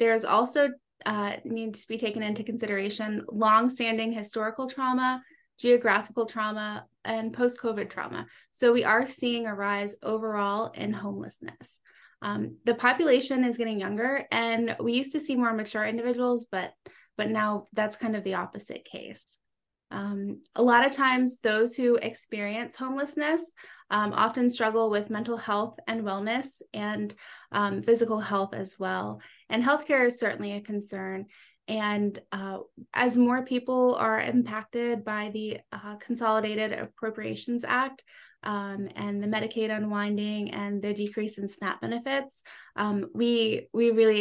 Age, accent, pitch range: 20-39, American, 205-240 Hz